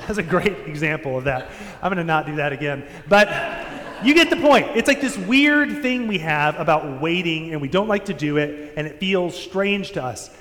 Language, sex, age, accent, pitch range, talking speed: English, male, 30-49, American, 145-185 Hz, 230 wpm